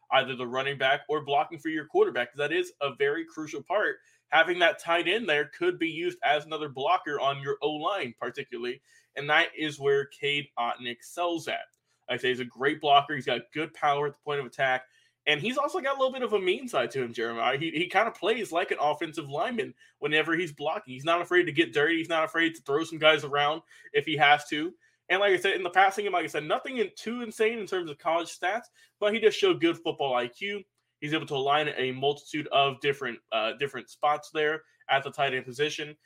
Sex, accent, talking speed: male, American, 240 wpm